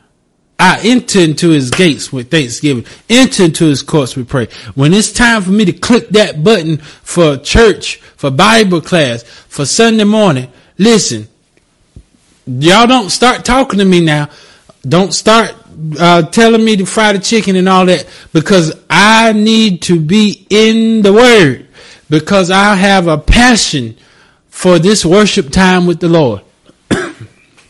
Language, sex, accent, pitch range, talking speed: English, male, American, 150-210 Hz, 150 wpm